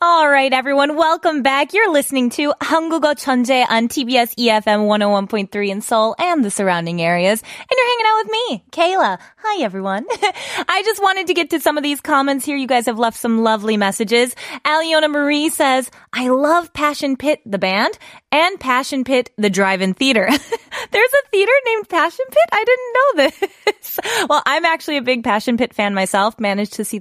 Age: 20-39